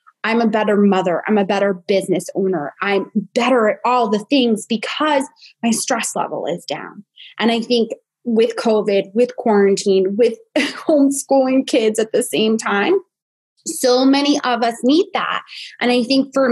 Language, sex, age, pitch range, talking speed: English, female, 20-39, 210-275 Hz, 165 wpm